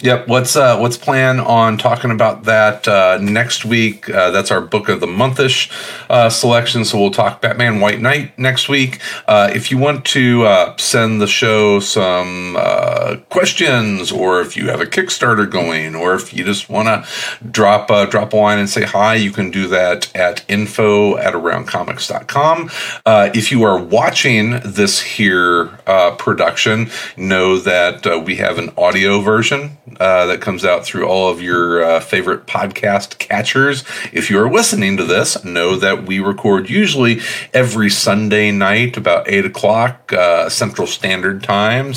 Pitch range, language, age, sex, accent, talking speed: 95-120 Hz, English, 40-59, male, American, 170 wpm